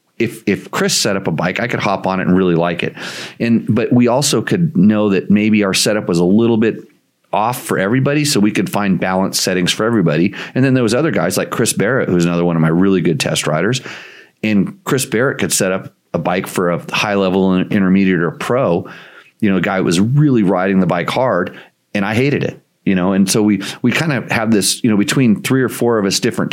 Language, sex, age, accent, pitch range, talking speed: English, male, 40-59, American, 95-130 Hz, 240 wpm